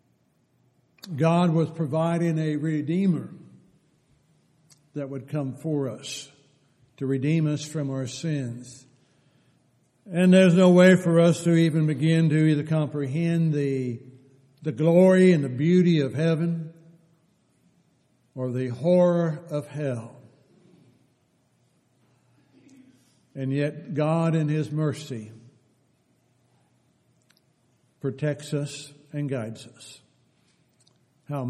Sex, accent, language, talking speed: male, American, English, 100 wpm